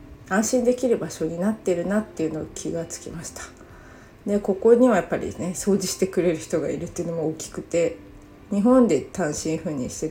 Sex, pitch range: female, 170-210 Hz